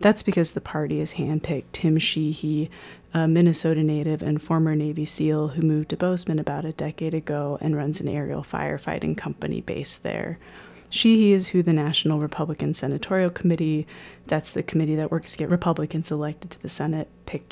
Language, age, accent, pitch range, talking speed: English, 20-39, American, 150-170 Hz, 180 wpm